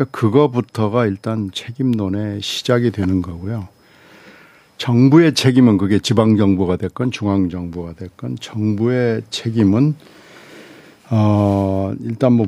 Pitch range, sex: 105-135 Hz, male